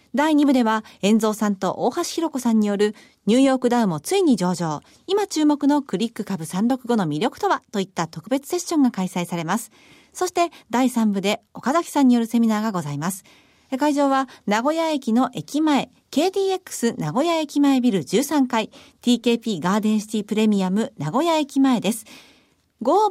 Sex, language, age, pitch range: female, Japanese, 40-59, 210-290 Hz